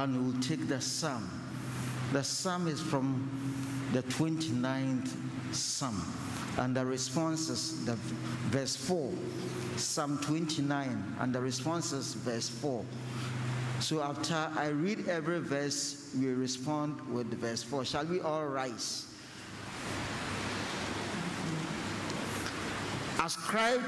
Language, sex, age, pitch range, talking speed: English, male, 50-69, 130-190 Hz, 105 wpm